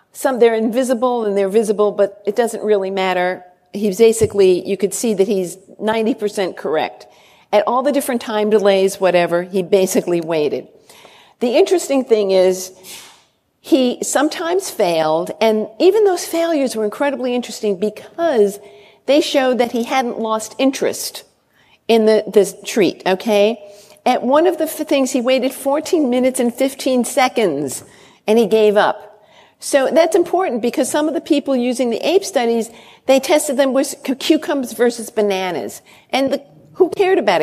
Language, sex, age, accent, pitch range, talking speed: English, female, 50-69, American, 210-290 Hz, 155 wpm